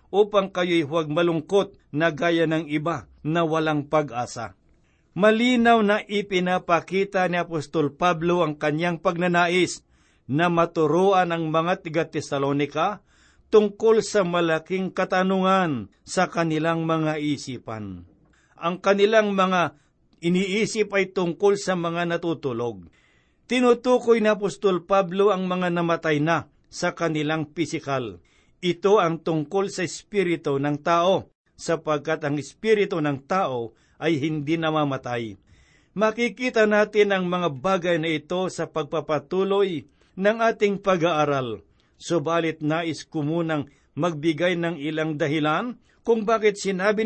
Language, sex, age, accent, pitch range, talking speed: Filipino, male, 50-69, native, 150-190 Hz, 115 wpm